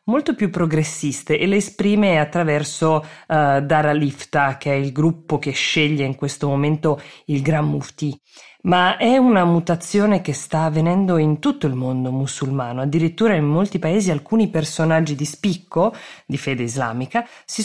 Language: Italian